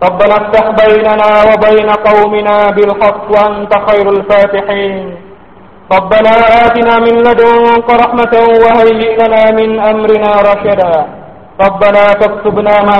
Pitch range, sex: 190-225 Hz, male